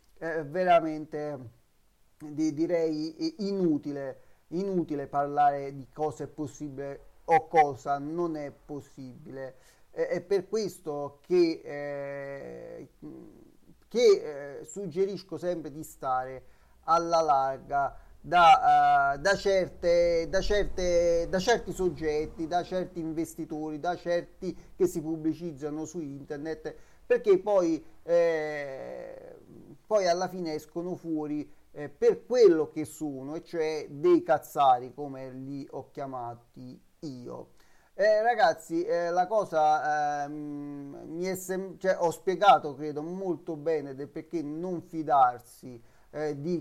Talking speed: 115 wpm